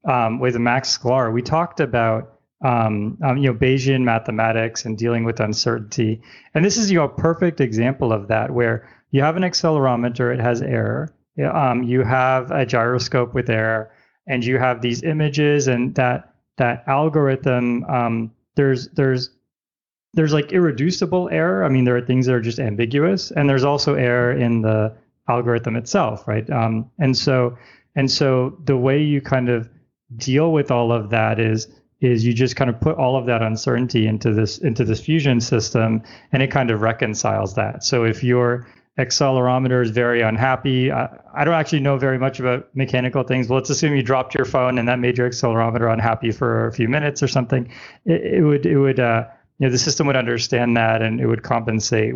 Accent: American